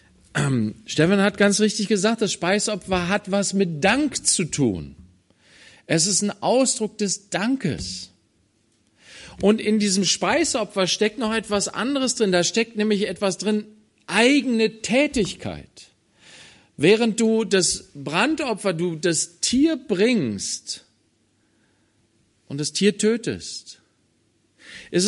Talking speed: 115 wpm